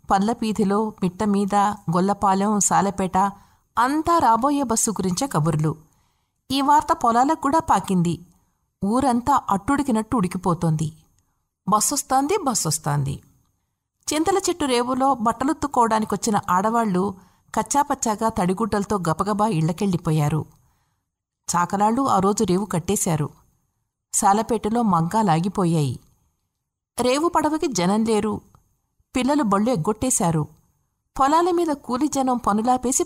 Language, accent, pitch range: Telugu, native, 170-250 Hz